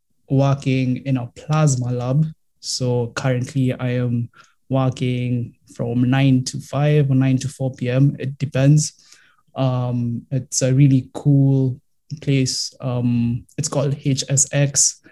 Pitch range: 130-145 Hz